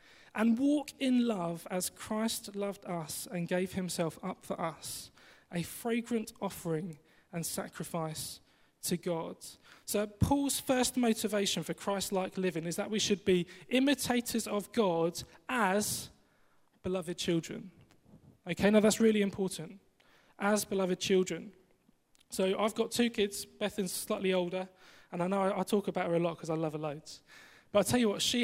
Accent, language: British, English